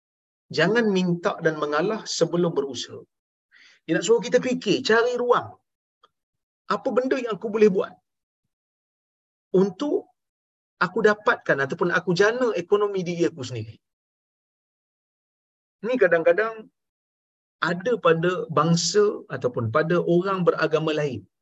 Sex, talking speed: male, 110 wpm